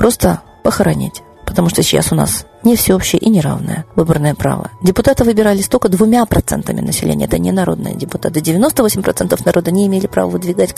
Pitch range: 165-210 Hz